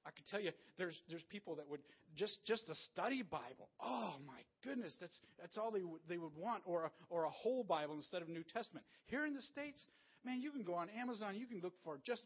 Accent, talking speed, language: American, 250 wpm, English